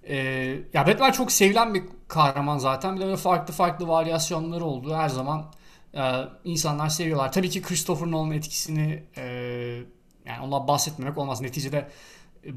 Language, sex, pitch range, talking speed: Turkish, male, 130-170 Hz, 140 wpm